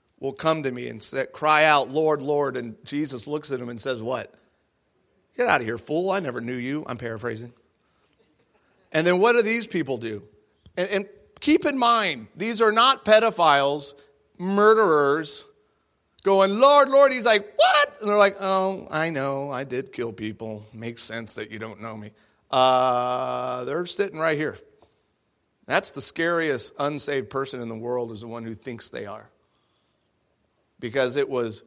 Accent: American